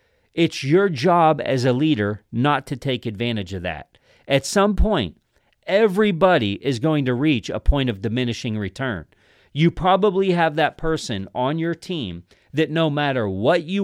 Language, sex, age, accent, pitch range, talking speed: English, male, 40-59, American, 110-150 Hz, 165 wpm